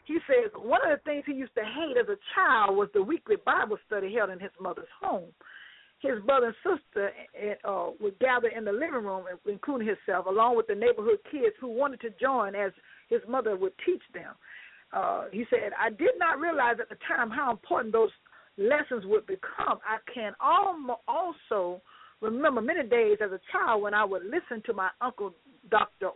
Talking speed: 190 wpm